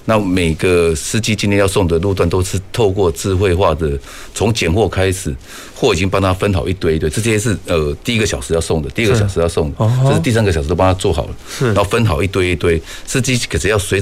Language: Chinese